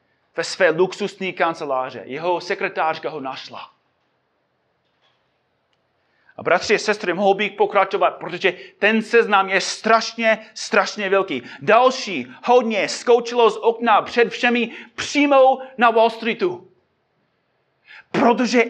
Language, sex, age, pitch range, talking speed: Czech, male, 30-49, 185-240 Hz, 110 wpm